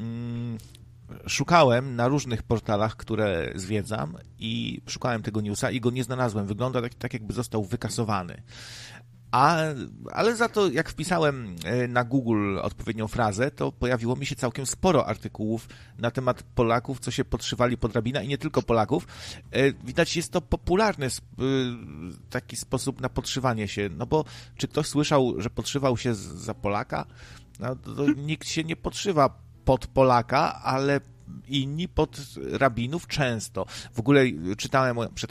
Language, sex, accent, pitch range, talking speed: Polish, male, native, 115-135 Hz, 150 wpm